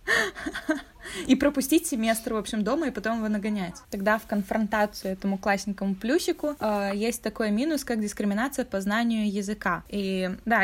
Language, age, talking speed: Russian, 20-39, 145 wpm